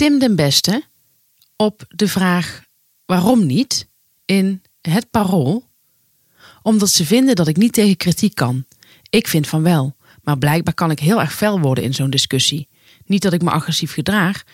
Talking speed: 170 wpm